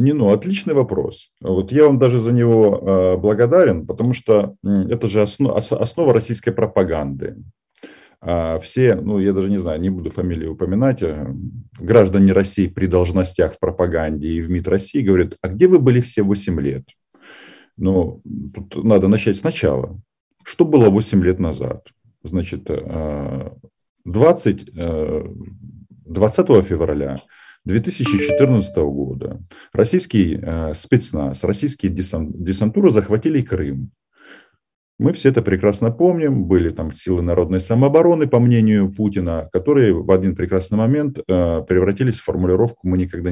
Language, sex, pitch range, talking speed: Russian, male, 90-115 Hz, 125 wpm